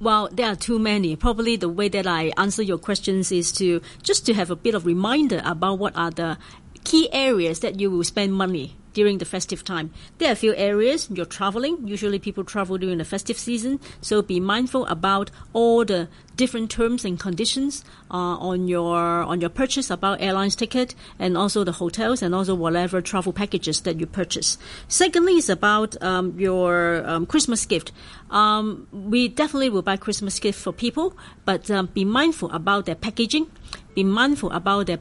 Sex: female